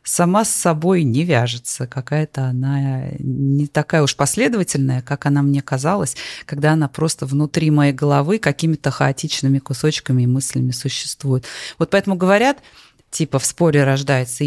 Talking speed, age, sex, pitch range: 140 wpm, 20-39, female, 130-160 Hz